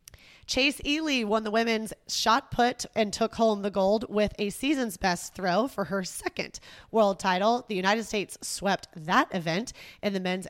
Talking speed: 175 wpm